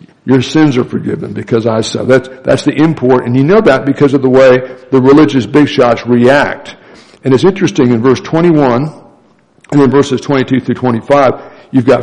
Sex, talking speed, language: male, 190 wpm, English